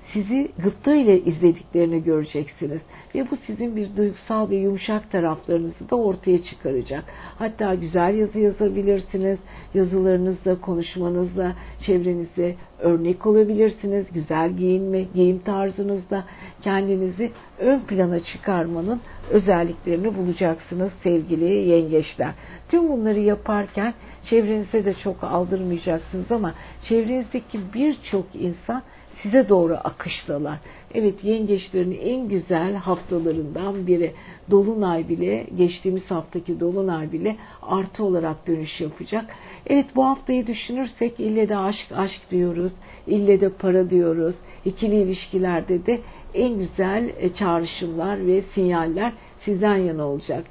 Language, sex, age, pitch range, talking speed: Turkish, female, 60-79, 175-215 Hz, 110 wpm